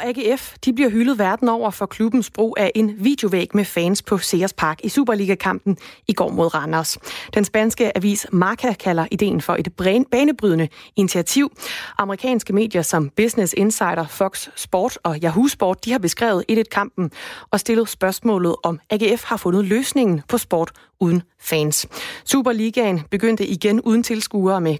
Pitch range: 170-225 Hz